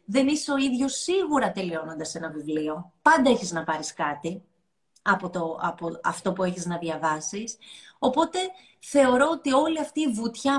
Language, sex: Greek, female